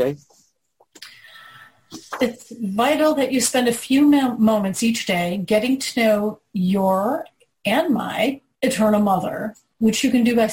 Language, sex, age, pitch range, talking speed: English, female, 40-59, 205-250 Hz, 130 wpm